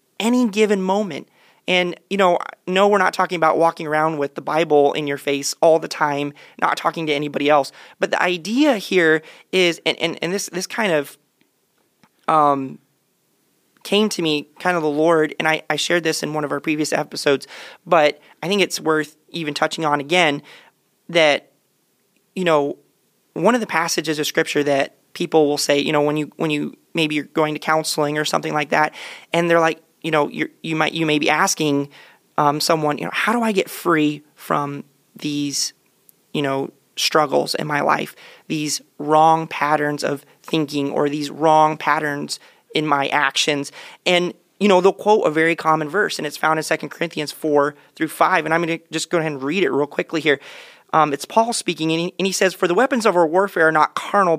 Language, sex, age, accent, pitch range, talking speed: English, male, 30-49, American, 150-175 Hz, 205 wpm